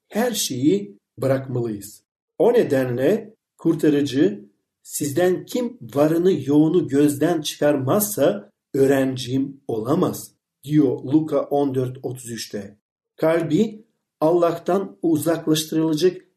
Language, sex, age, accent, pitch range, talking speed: Turkish, male, 50-69, native, 135-190 Hz, 75 wpm